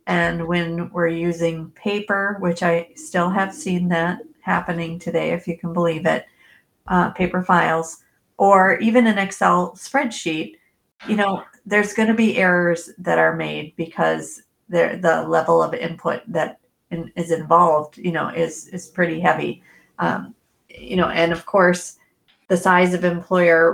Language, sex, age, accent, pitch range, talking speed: English, female, 40-59, American, 165-180 Hz, 150 wpm